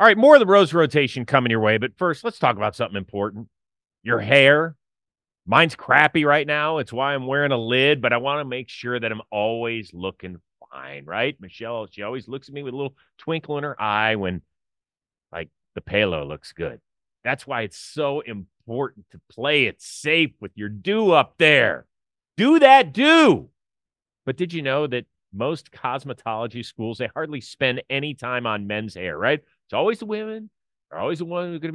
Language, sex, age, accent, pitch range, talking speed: English, male, 40-59, American, 110-165 Hz, 200 wpm